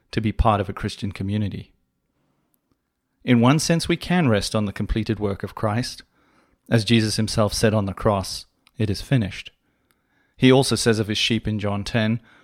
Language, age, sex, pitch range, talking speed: English, 30-49, male, 100-120 Hz, 185 wpm